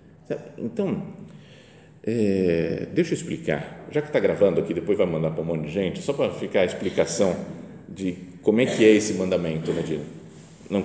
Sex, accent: male, Brazilian